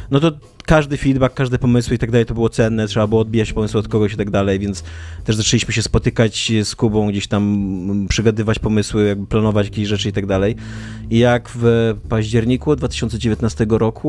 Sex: male